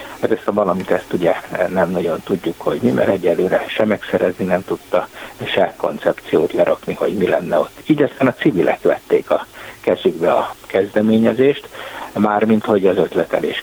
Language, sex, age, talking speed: Hungarian, male, 60-79, 165 wpm